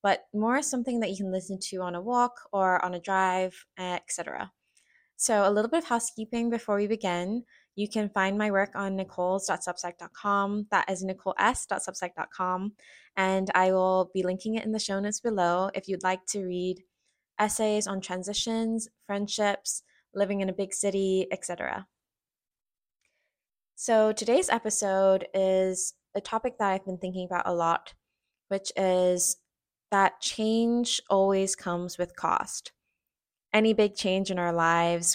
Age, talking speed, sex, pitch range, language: 20-39, 150 wpm, female, 180-205 Hz, English